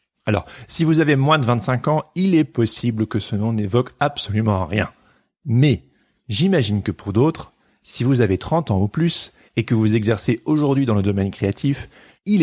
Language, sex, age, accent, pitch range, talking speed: French, male, 30-49, French, 105-145 Hz, 190 wpm